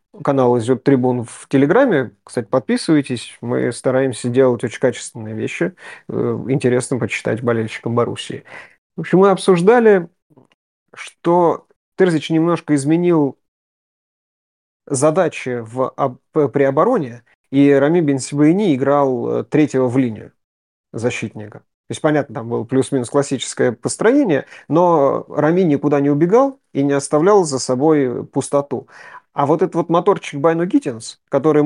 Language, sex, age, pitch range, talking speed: Russian, male, 30-49, 125-155 Hz, 120 wpm